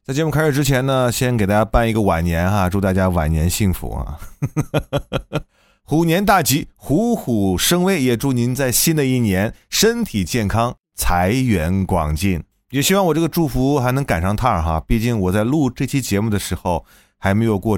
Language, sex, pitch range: Chinese, male, 95-145 Hz